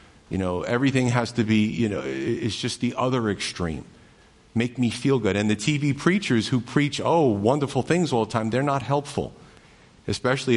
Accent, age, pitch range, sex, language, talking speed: American, 50-69, 110-140 Hz, male, English, 185 wpm